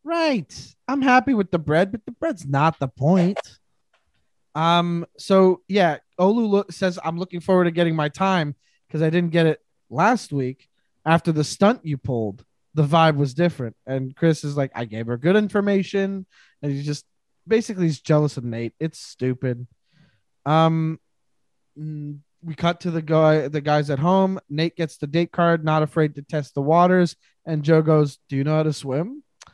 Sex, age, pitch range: male, 20-39, 145-175 Hz